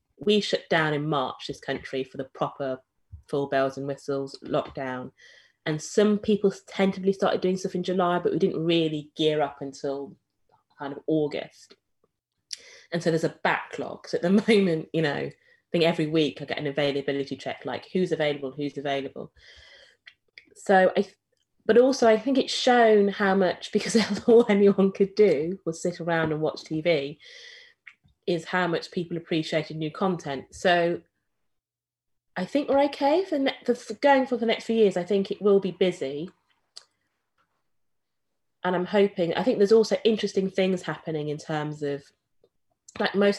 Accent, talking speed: British, 165 wpm